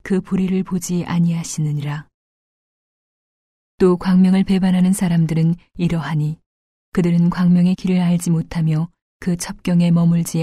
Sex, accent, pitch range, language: female, native, 160-180 Hz, Korean